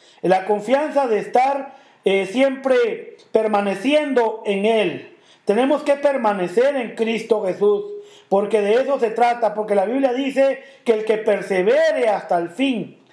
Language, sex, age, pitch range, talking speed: English, male, 40-59, 195-275 Hz, 140 wpm